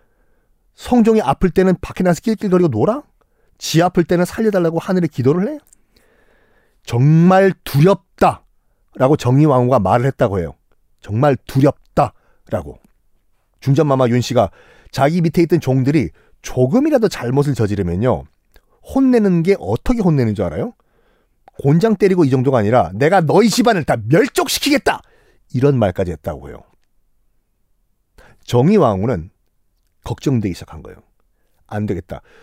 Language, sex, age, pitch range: Korean, male, 40-59, 120-185 Hz